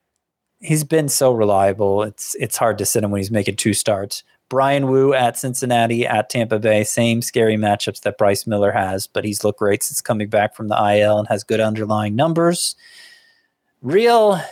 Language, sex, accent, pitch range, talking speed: English, male, American, 105-130 Hz, 185 wpm